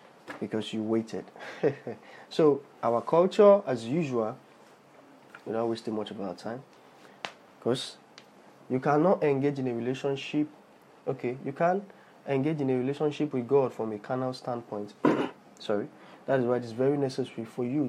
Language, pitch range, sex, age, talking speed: English, 110-130 Hz, male, 20-39, 150 wpm